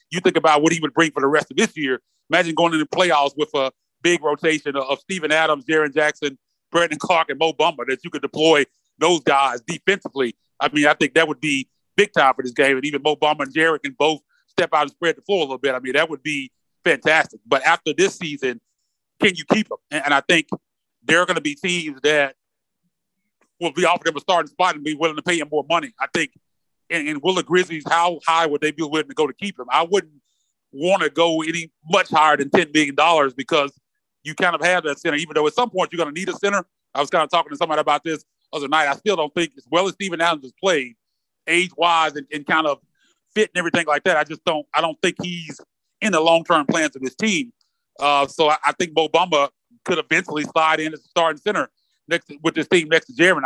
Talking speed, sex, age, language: 250 wpm, male, 30-49, English